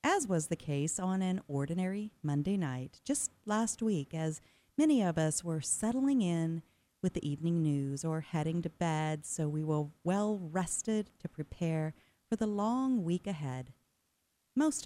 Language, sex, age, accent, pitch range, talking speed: English, female, 40-59, American, 155-225 Hz, 160 wpm